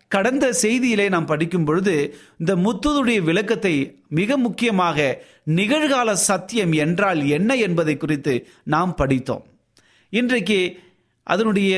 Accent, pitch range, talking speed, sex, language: native, 150-220 Hz, 100 wpm, male, Tamil